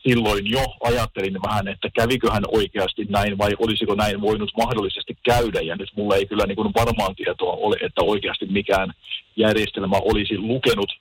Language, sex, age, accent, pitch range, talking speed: Finnish, male, 40-59, native, 100-115 Hz, 160 wpm